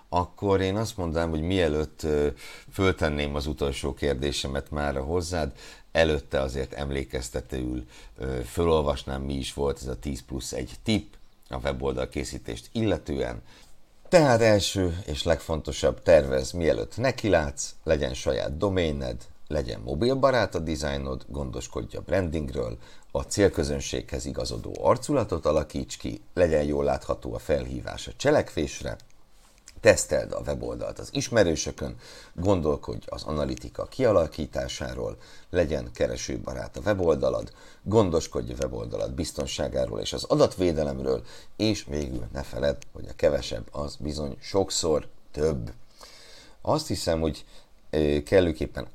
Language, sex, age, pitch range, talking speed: Hungarian, male, 60-79, 70-85 Hz, 115 wpm